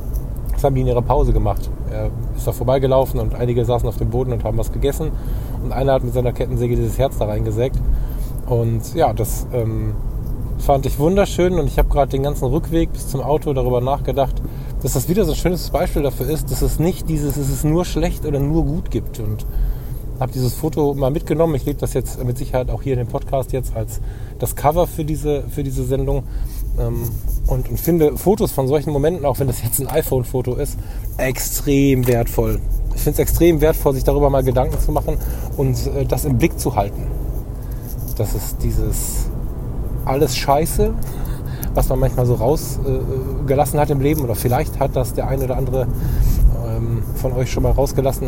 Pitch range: 120-145 Hz